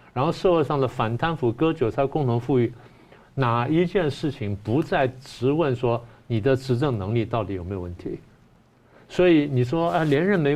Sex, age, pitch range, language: male, 50-69, 115-145 Hz, Chinese